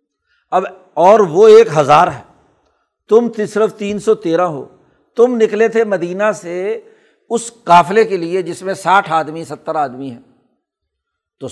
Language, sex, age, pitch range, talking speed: Urdu, male, 60-79, 160-215 Hz, 150 wpm